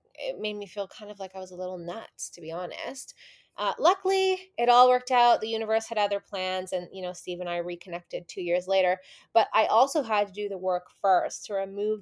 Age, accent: 20-39, American